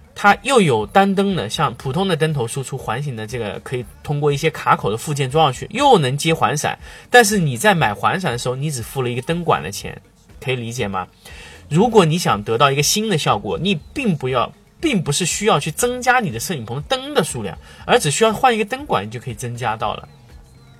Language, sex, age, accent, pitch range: Chinese, male, 20-39, native, 130-205 Hz